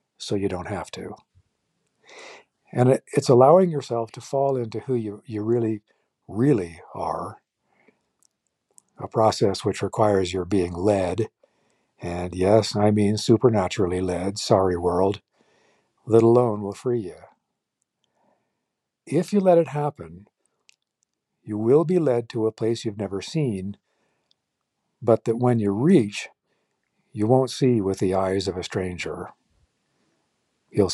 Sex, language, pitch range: male, English, 95-130 Hz